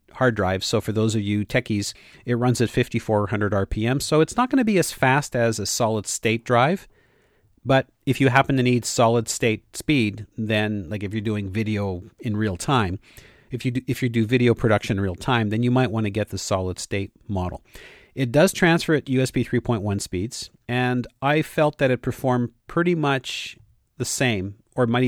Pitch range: 105-135 Hz